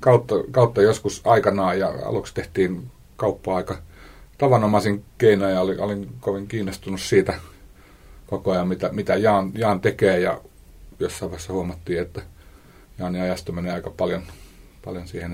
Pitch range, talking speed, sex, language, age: 90-100 Hz, 140 wpm, male, Finnish, 30-49